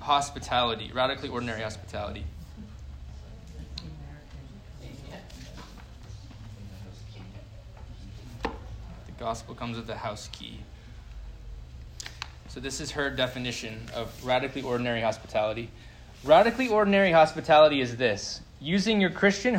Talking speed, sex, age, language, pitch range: 85 wpm, male, 20-39, English, 115-160 Hz